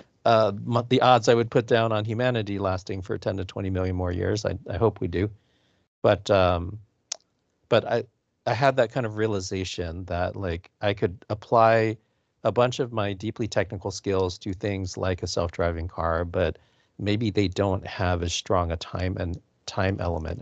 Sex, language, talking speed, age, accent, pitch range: male, English, 180 wpm, 40-59, American, 90-110 Hz